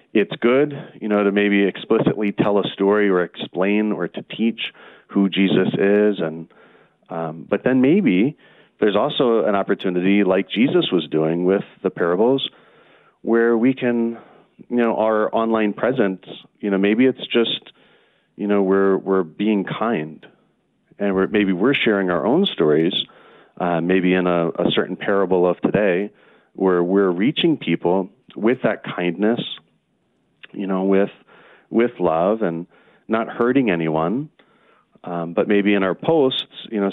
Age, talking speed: 40-59, 155 wpm